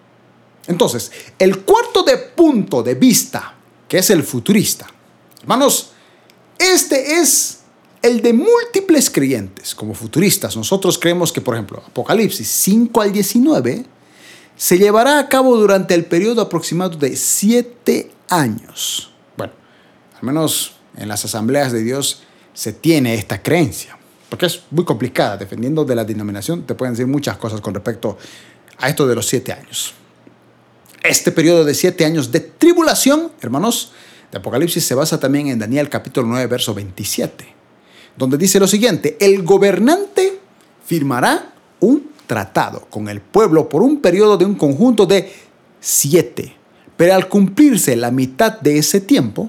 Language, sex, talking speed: Spanish, male, 145 wpm